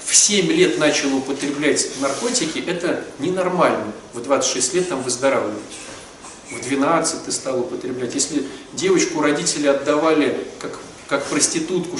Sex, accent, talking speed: male, native, 125 wpm